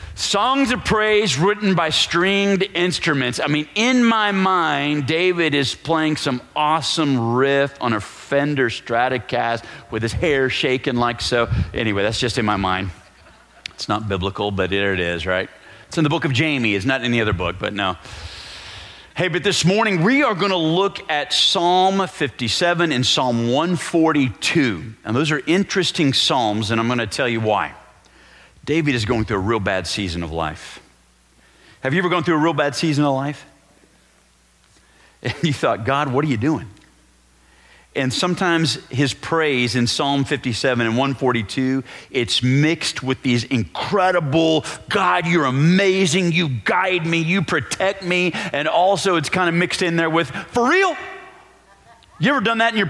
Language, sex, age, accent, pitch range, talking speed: English, male, 40-59, American, 115-180 Hz, 170 wpm